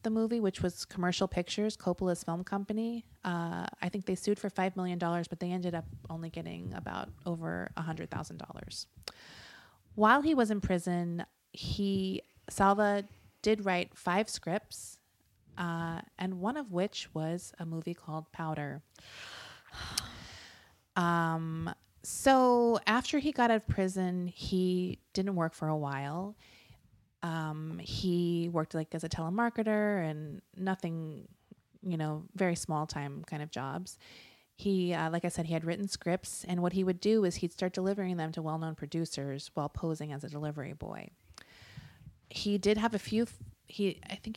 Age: 20-39